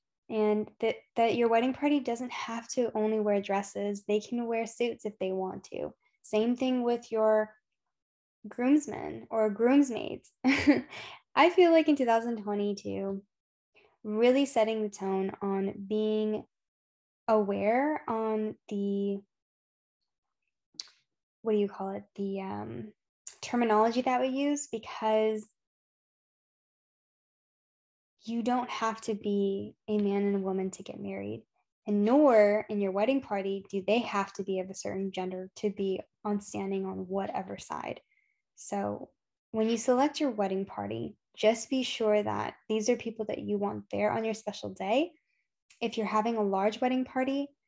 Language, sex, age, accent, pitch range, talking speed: English, female, 10-29, American, 200-245 Hz, 145 wpm